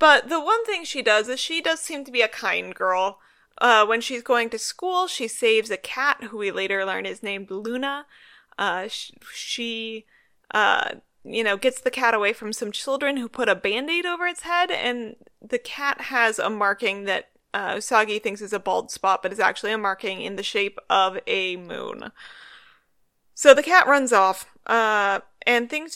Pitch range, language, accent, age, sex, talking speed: 200-270 Hz, English, American, 30-49, female, 195 wpm